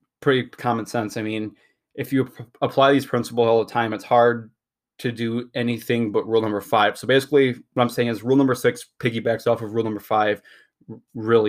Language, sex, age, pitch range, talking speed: English, male, 20-39, 110-130 Hz, 200 wpm